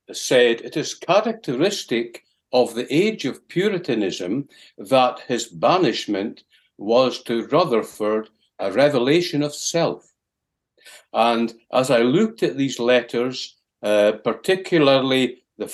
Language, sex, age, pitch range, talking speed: English, male, 60-79, 120-160 Hz, 110 wpm